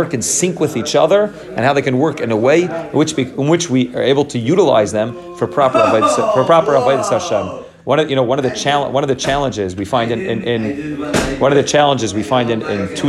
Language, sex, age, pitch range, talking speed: English, male, 30-49, 125-165 Hz, 250 wpm